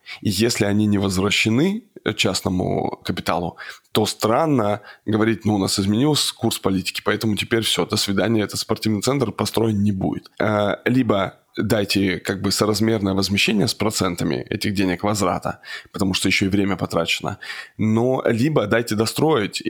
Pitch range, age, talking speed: 100-115 Hz, 20-39, 145 wpm